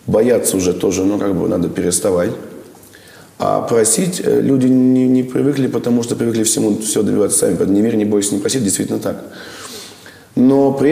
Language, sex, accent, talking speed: Russian, male, native, 170 wpm